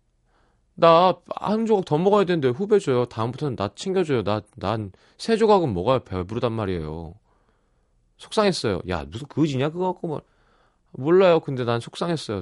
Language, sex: Korean, male